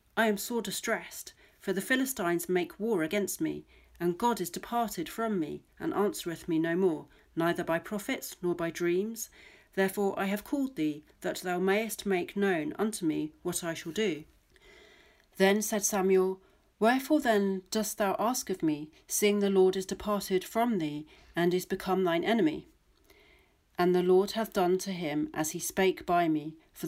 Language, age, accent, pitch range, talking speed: English, 40-59, British, 165-200 Hz, 175 wpm